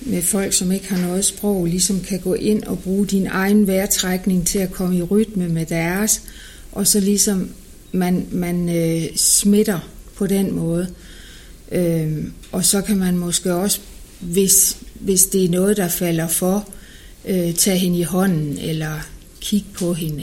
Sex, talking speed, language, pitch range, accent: female, 160 wpm, Danish, 170-200 Hz, native